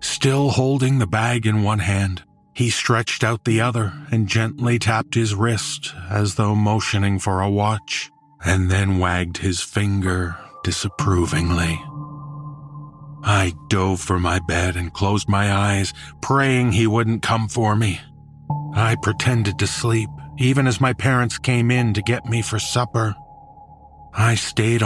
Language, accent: English, American